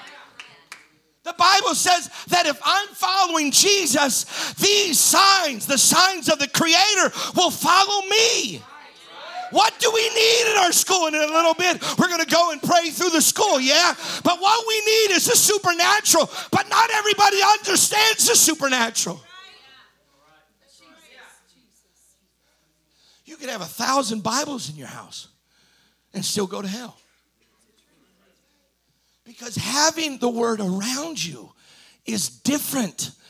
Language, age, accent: English, 50-69, American